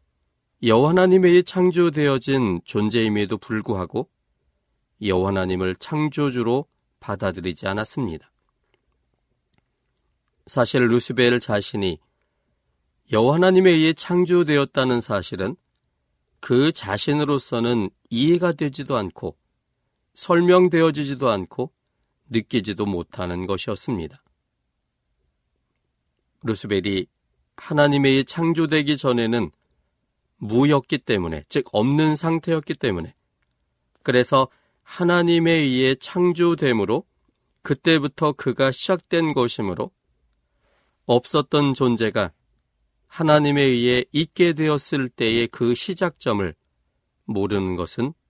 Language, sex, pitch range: Korean, male, 90-145 Hz